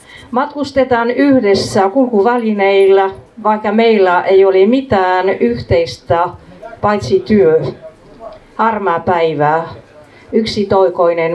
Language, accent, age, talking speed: Finnish, native, 50-69, 80 wpm